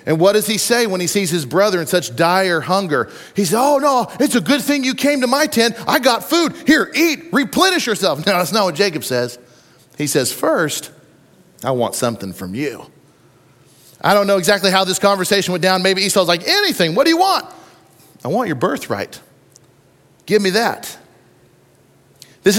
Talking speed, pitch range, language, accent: 195 wpm, 155-215 Hz, English, American